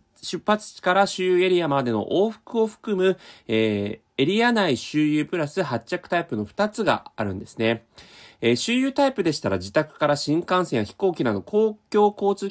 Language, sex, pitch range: Japanese, male, 110-185 Hz